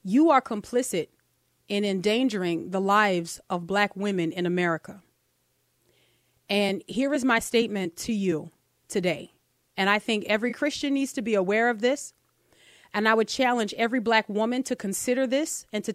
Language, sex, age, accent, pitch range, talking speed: English, female, 30-49, American, 195-260 Hz, 160 wpm